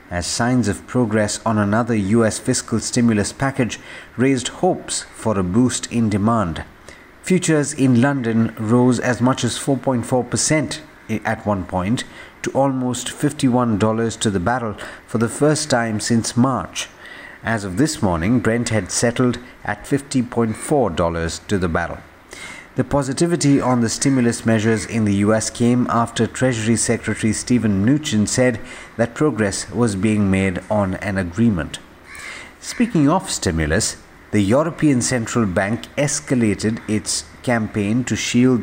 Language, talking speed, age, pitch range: English, 135 wpm, 50-69, 105-125 Hz